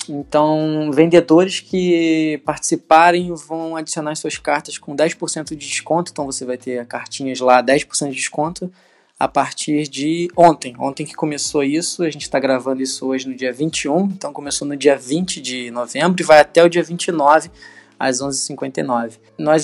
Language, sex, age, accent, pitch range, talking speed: Portuguese, male, 20-39, Brazilian, 135-170 Hz, 170 wpm